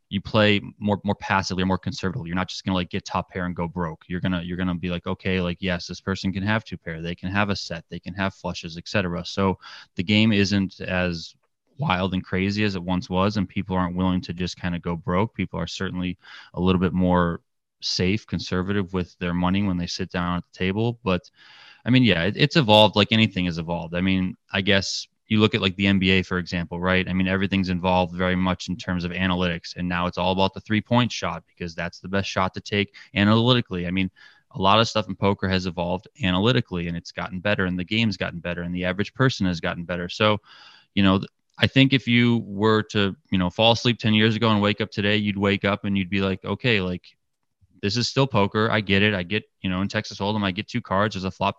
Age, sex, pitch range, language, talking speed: 20-39, male, 90-105 Hz, English, 250 wpm